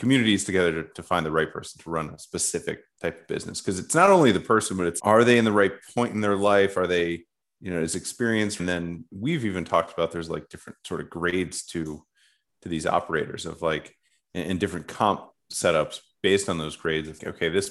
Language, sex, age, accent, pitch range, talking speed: English, male, 30-49, American, 85-100 Hz, 230 wpm